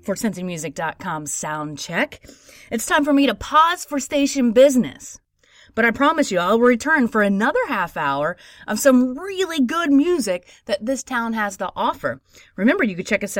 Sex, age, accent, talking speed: female, 30-49, American, 170 wpm